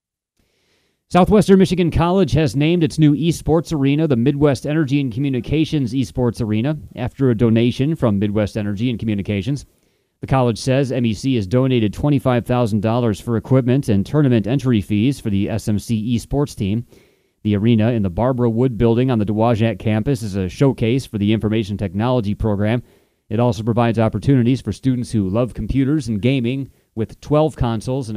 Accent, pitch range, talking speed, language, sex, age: American, 110-130 Hz, 160 wpm, English, male, 30-49